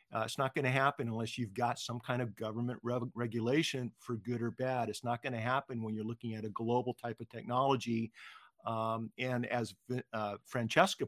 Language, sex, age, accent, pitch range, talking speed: English, male, 50-69, American, 115-130 Hz, 200 wpm